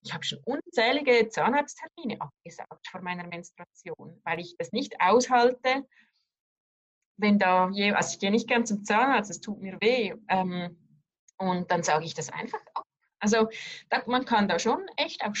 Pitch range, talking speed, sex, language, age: 190-245 Hz, 165 wpm, female, German, 20-39